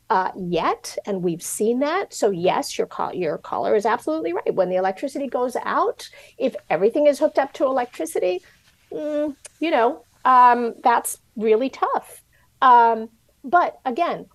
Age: 50-69